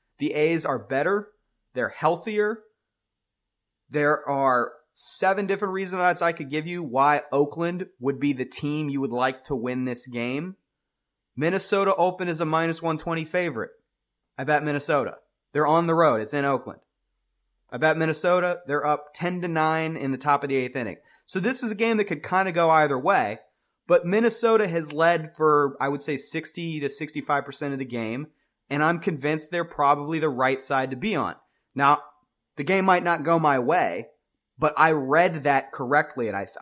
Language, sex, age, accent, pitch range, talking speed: English, male, 30-49, American, 135-170 Hz, 180 wpm